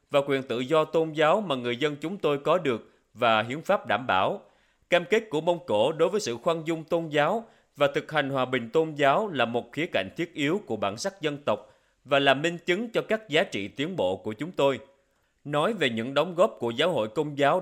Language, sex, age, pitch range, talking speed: Vietnamese, male, 30-49, 120-170 Hz, 240 wpm